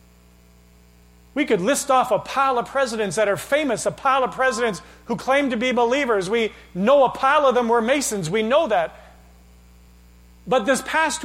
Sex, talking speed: male, 180 wpm